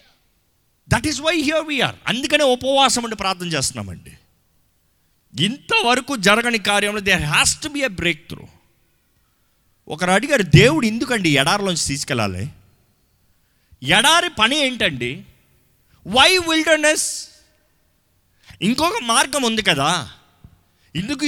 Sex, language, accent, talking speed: male, Telugu, native, 105 wpm